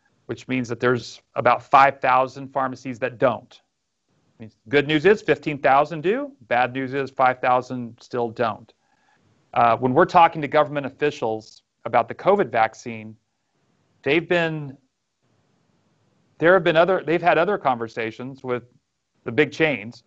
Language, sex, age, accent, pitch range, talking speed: English, male, 40-59, American, 120-150 Hz, 135 wpm